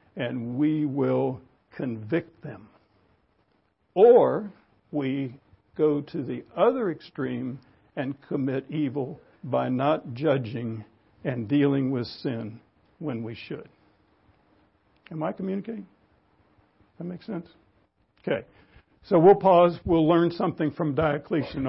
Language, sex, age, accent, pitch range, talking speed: English, male, 60-79, American, 140-180 Hz, 110 wpm